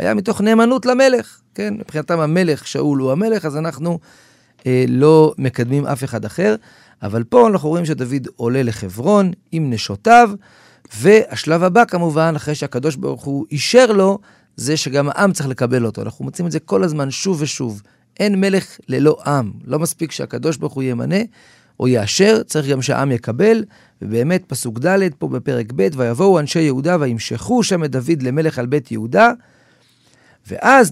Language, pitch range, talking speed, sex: Hebrew, 125-180 Hz, 165 wpm, male